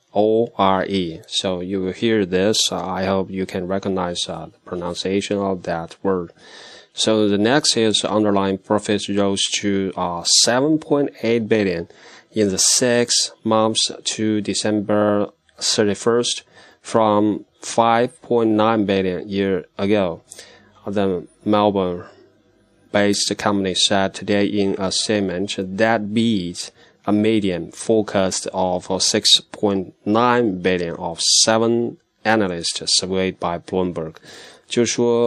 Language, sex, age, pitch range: Chinese, male, 20-39, 95-110 Hz